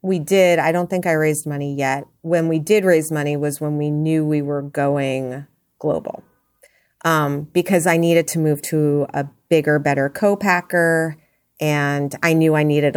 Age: 30-49